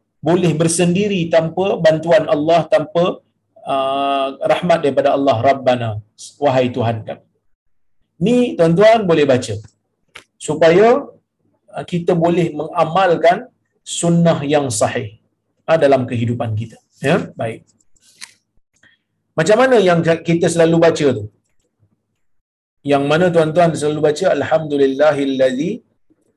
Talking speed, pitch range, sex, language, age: 100 wpm, 120-170 Hz, male, Malayalam, 50-69